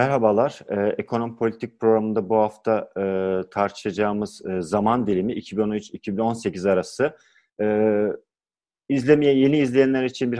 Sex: male